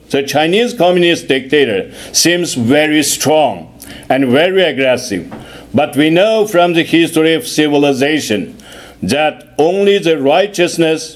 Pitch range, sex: 145-190 Hz, male